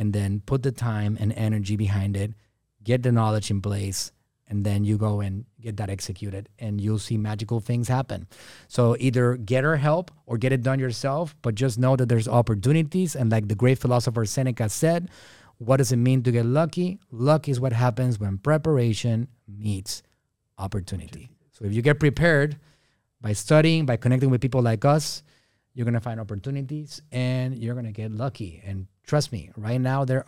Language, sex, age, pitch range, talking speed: English, male, 30-49, 110-135 Hz, 190 wpm